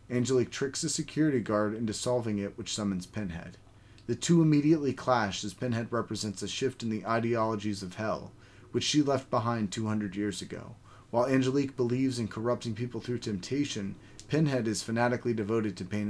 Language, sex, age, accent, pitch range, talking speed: English, male, 30-49, American, 105-125 Hz, 170 wpm